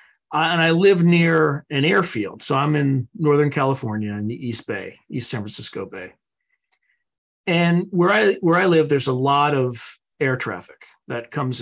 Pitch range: 125-165 Hz